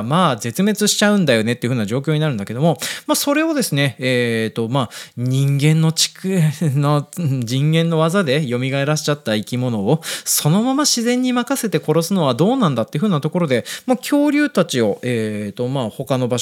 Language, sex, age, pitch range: Japanese, male, 20-39, 125-205 Hz